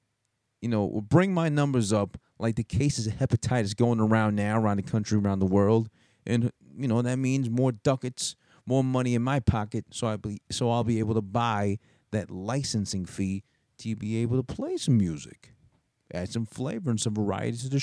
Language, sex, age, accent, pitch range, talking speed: English, male, 30-49, American, 100-130 Hz, 205 wpm